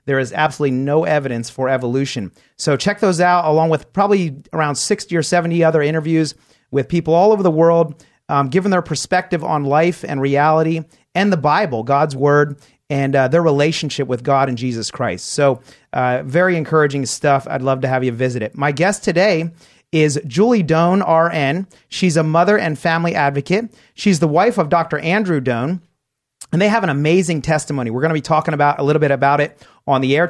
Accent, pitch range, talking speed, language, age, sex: American, 140-175 Hz, 200 wpm, English, 30-49, male